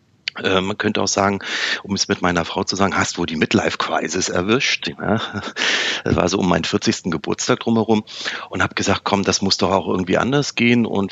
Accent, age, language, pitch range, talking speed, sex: German, 40-59, German, 95-120 Hz, 195 wpm, male